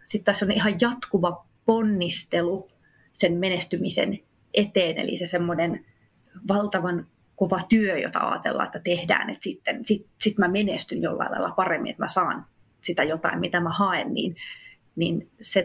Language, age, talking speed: Finnish, 30-49, 150 wpm